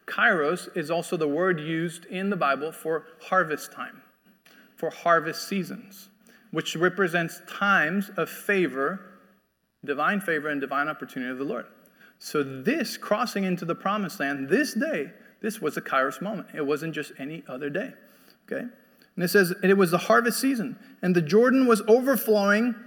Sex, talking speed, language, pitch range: male, 165 wpm, English, 160-220 Hz